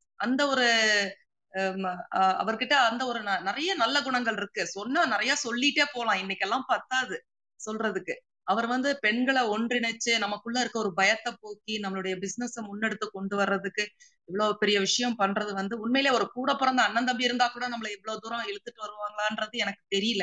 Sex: female